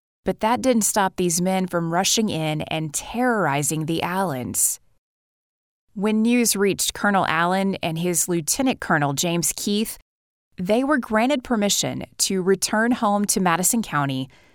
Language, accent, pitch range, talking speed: English, American, 165-215 Hz, 140 wpm